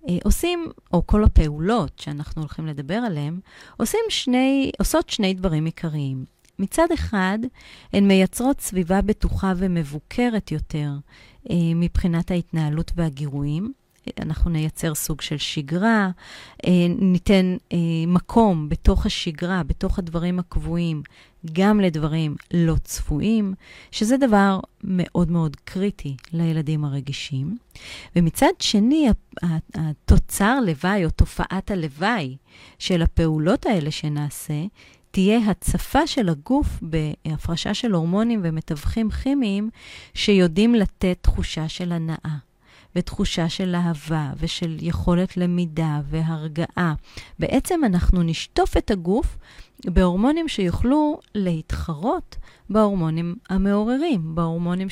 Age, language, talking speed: 30-49, Hebrew, 100 wpm